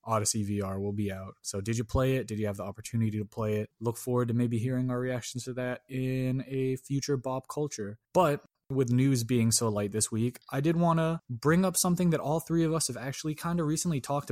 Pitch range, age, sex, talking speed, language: 110-140 Hz, 20-39, male, 245 wpm, English